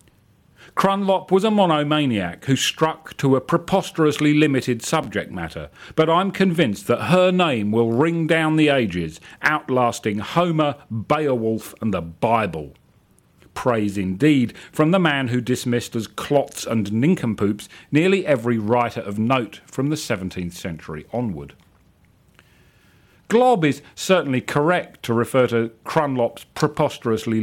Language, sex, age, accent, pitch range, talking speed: English, male, 40-59, British, 110-155 Hz, 130 wpm